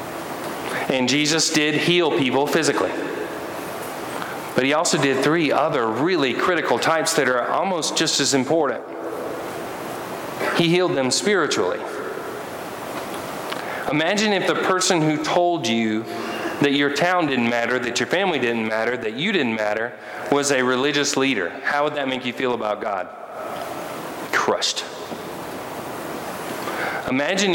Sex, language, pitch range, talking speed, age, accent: male, English, 125-150 Hz, 130 wpm, 40-59, American